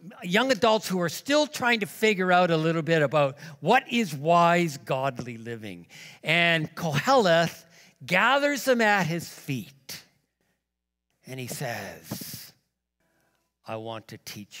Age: 60-79